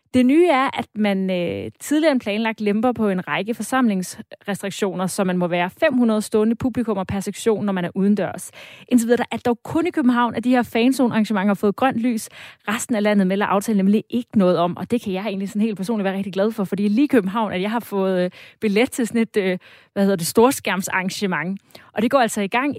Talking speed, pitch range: 220 wpm, 190-240 Hz